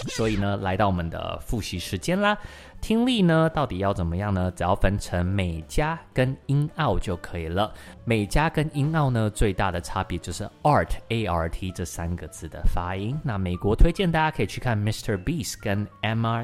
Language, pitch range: Chinese, 85-115 Hz